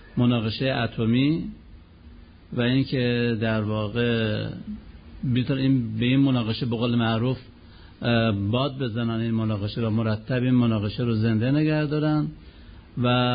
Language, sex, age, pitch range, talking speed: Persian, male, 60-79, 110-135 Hz, 110 wpm